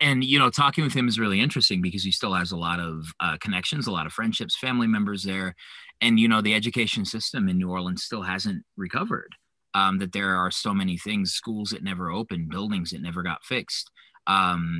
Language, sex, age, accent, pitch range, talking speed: English, male, 30-49, American, 90-120 Hz, 220 wpm